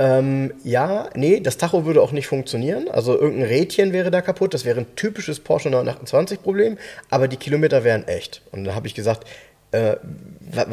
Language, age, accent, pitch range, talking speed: German, 30-49, German, 115-165 Hz, 180 wpm